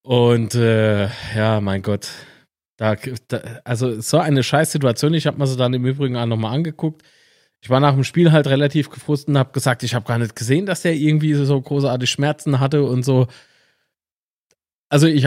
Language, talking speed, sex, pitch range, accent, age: German, 195 wpm, male, 115-150 Hz, German, 30-49